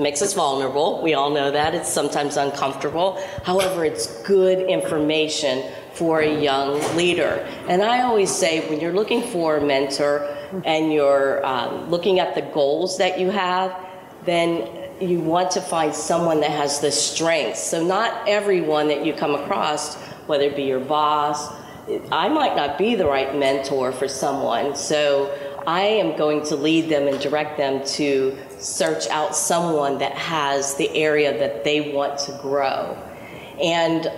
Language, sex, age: English, female, 40-59